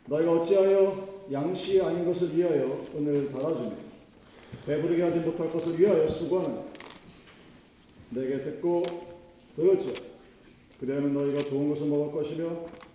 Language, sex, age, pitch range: Korean, male, 40-59, 140-180 Hz